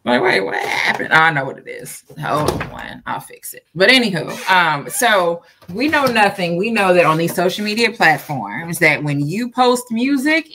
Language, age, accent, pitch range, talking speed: English, 20-39, American, 145-220 Hz, 190 wpm